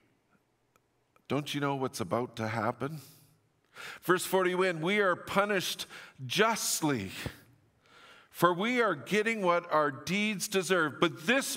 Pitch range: 130-175 Hz